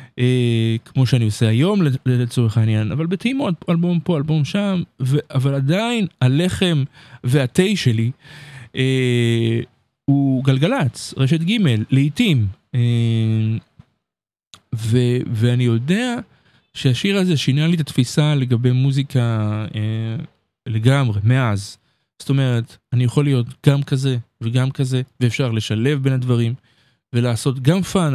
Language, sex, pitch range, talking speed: Hebrew, male, 120-150 Hz, 120 wpm